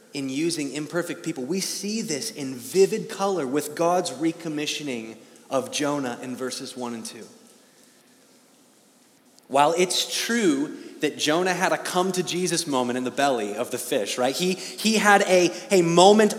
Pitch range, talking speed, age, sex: 155-230 Hz, 160 wpm, 30-49, male